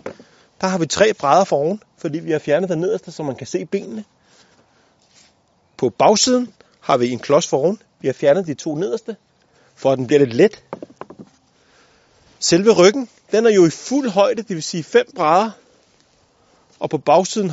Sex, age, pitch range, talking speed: male, 30-49, 150-200 Hz, 185 wpm